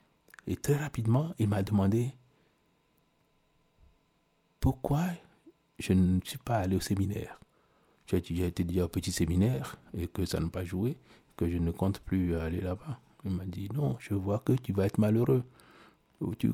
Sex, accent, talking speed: male, French, 170 wpm